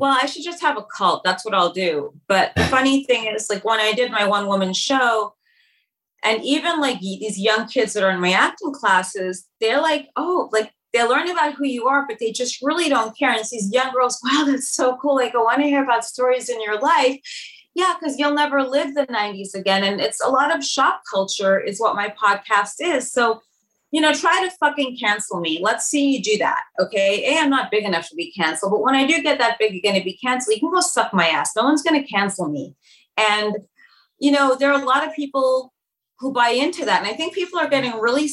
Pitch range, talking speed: 210-280 Hz, 245 wpm